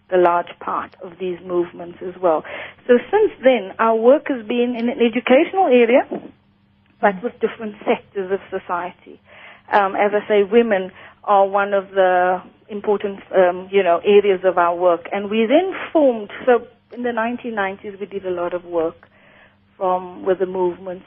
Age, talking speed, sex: 40-59, 170 wpm, female